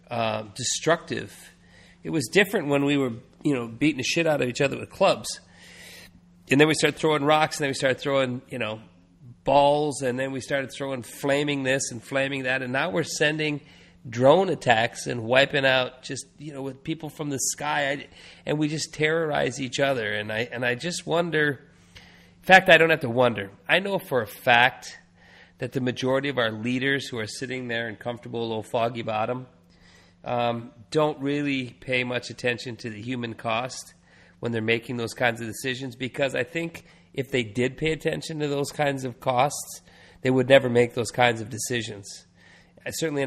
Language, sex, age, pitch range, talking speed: English, male, 40-59, 115-145 Hz, 190 wpm